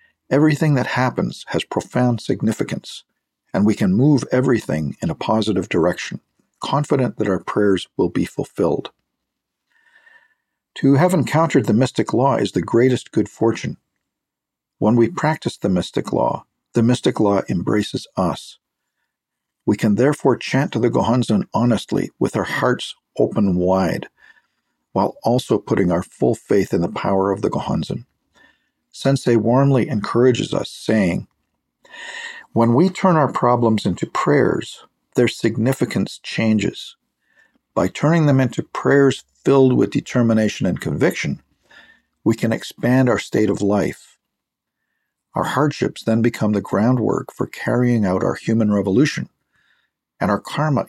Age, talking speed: 50-69, 135 wpm